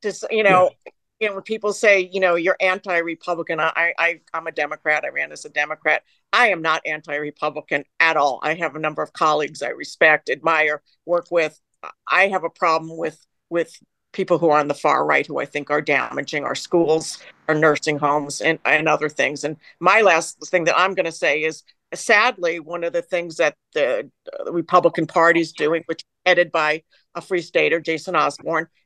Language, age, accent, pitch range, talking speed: English, 50-69, American, 155-180 Hz, 205 wpm